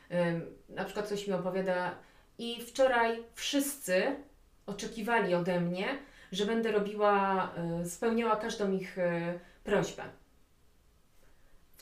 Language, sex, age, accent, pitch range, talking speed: Polish, female, 30-49, native, 180-225 Hz, 95 wpm